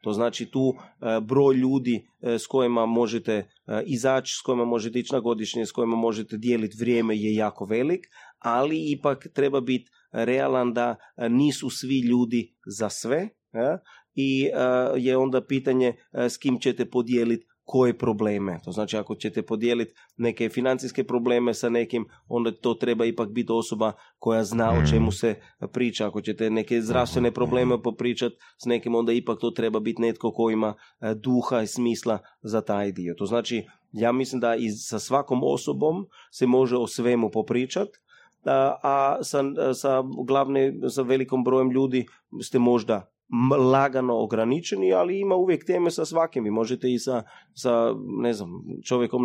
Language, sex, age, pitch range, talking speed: Croatian, male, 30-49, 115-130 Hz, 150 wpm